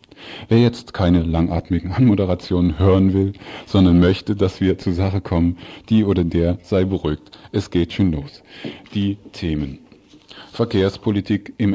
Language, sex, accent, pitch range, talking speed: German, male, German, 85-100 Hz, 140 wpm